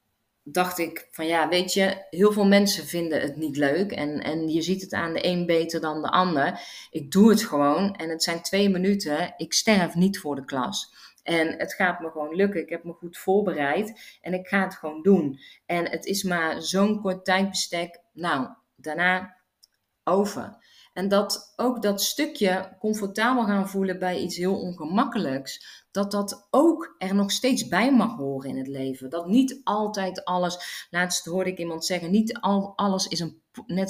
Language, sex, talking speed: Dutch, female, 185 wpm